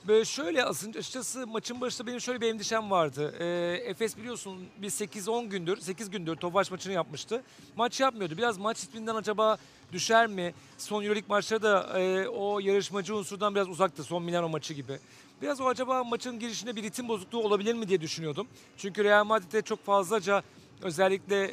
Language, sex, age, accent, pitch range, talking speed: Turkish, male, 50-69, native, 175-215 Hz, 175 wpm